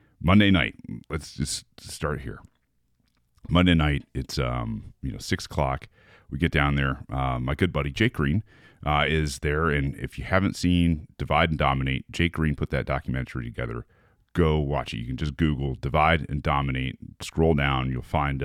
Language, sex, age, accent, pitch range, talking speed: English, male, 30-49, American, 70-90 Hz, 180 wpm